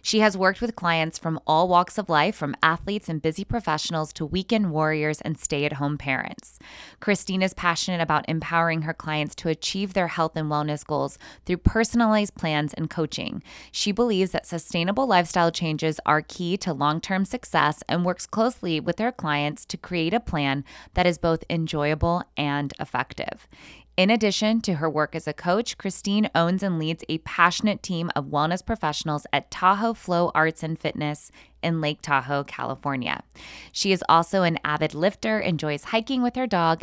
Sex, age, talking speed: female, 20-39, 180 wpm